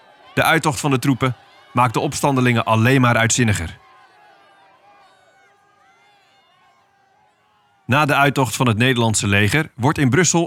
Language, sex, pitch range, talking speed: Dutch, male, 115-150 Hz, 120 wpm